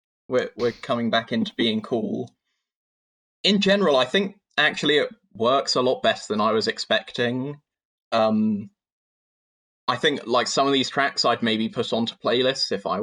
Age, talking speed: 20-39, 165 wpm